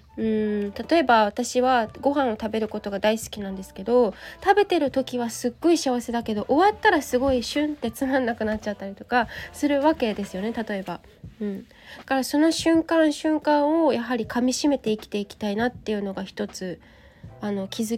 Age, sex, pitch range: 20-39, female, 215-290 Hz